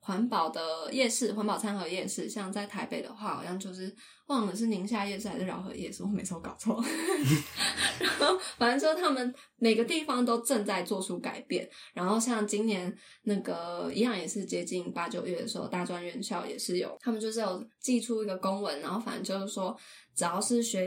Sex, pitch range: female, 185-235 Hz